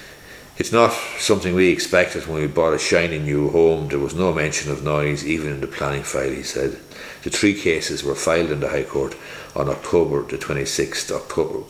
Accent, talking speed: Irish, 200 wpm